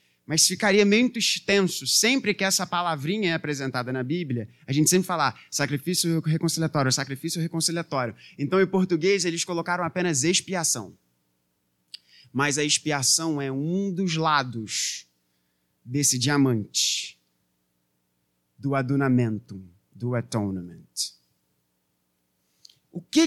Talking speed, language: 110 wpm, Portuguese